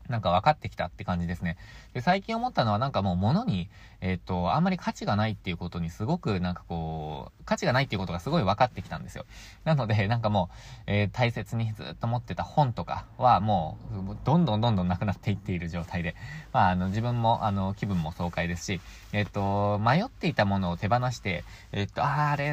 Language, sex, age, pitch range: Japanese, male, 20-39, 95-130 Hz